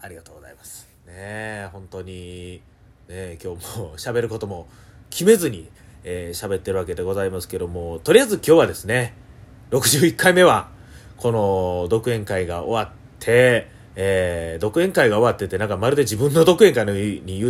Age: 30-49